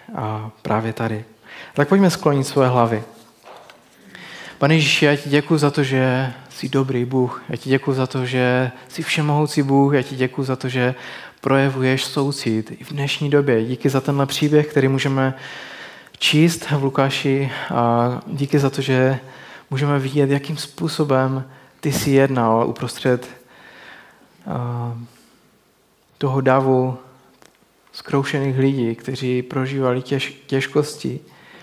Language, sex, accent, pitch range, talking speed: Czech, male, native, 130-145 Hz, 130 wpm